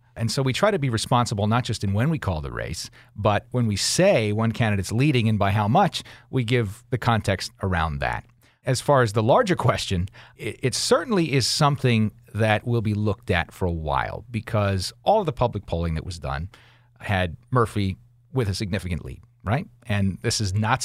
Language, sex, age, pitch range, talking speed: English, male, 40-59, 105-130 Hz, 200 wpm